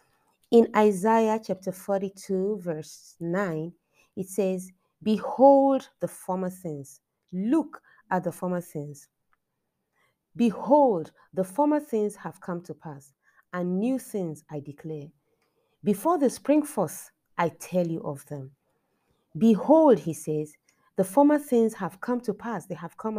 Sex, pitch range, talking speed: female, 170-220 Hz, 135 wpm